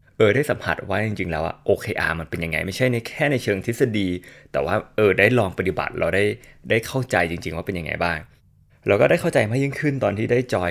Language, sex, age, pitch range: Thai, male, 20-39, 90-130 Hz